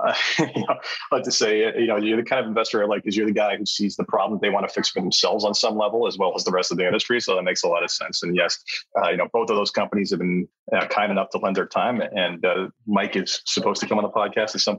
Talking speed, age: 315 wpm, 30-49